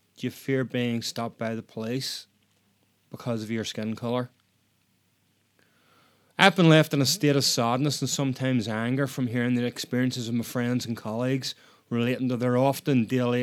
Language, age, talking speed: English, 30-49, 170 wpm